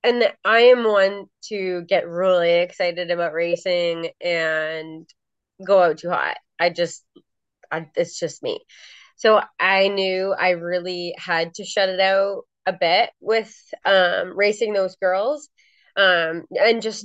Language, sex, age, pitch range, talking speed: English, female, 20-39, 175-225 Hz, 145 wpm